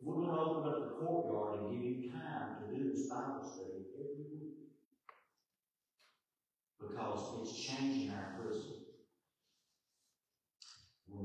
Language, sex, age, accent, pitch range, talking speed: English, male, 50-69, American, 105-150 Hz, 130 wpm